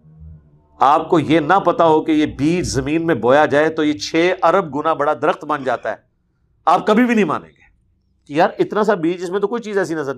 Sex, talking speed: male, 235 wpm